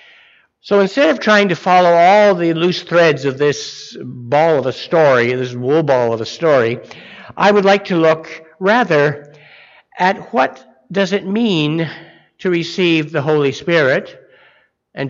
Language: English